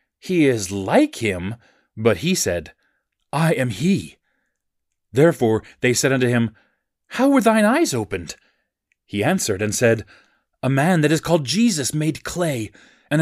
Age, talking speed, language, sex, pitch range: 30-49, 150 wpm, English, male, 105-155 Hz